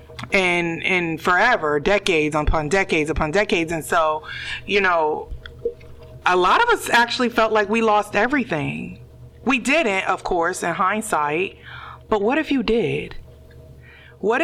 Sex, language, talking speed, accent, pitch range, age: female, English, 140 wpm, American, 150-200 Hz, 30-49